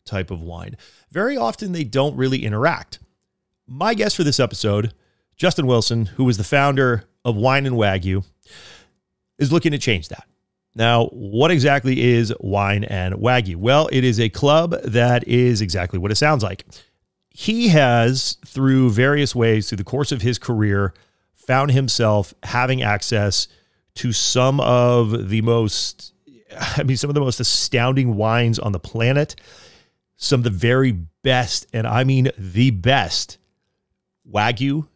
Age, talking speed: 30-49, 150 wpm